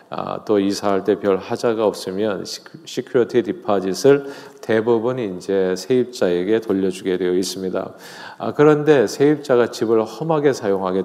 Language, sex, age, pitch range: Korean, male, 40-59, 100-135 Hz